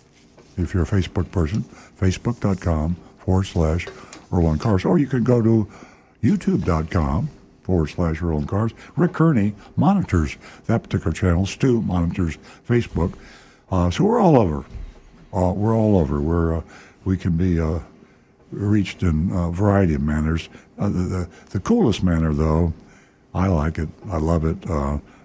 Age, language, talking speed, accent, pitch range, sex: 60-79, English, 145 wpm, American, 80-105 Hz, male